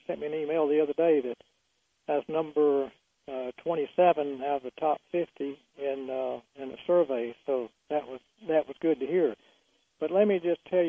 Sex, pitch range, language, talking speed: male, 140-170 Hz, English, 205 wpm